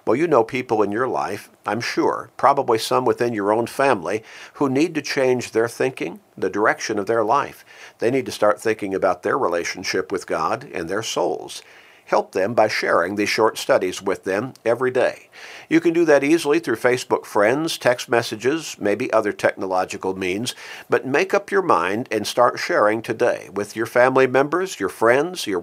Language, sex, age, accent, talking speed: English, male, 50-69, American, 185 wpm